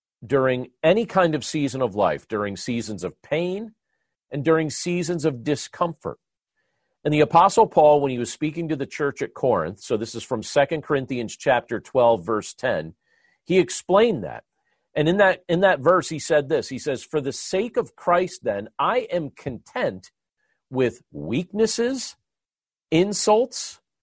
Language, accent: English, American